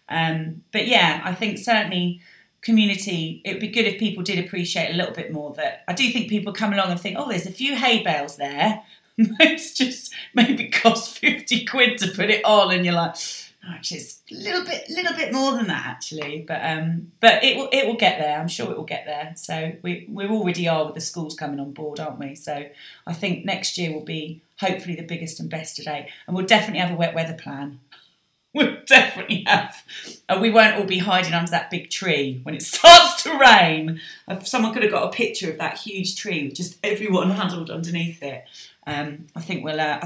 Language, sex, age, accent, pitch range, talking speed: English, female, 30-49, British, 160-225 Hz, 225 wpm